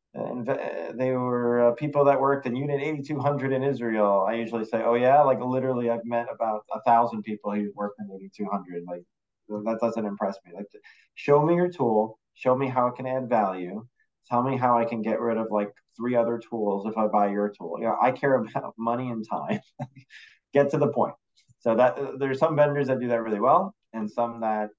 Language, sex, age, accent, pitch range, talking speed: English, male, 20-39, American, 105-125 Hz, 215 wpm